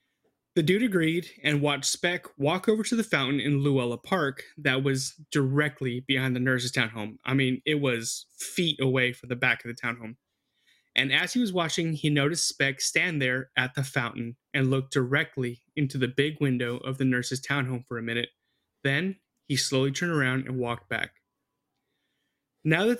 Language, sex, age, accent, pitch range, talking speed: English, male, 30-49, American, 125-155 Hz, 185 wpm